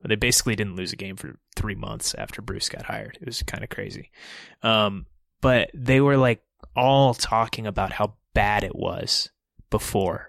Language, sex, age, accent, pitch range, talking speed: English, male, 20-39, American, 105-130 Hz, 180 wpm